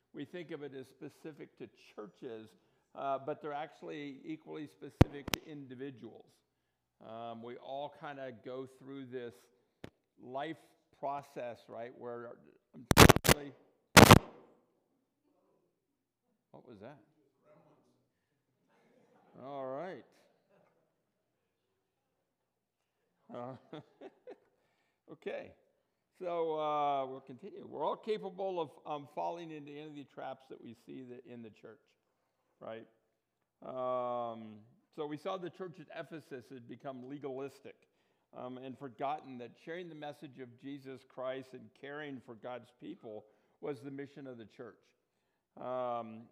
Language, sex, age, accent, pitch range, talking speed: English, male, 60-79, American, 125-150 Hz, 115 wpm